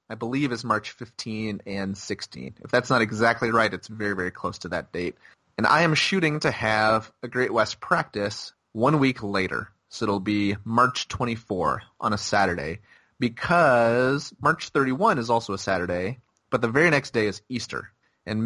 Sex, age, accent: male, 30-49, American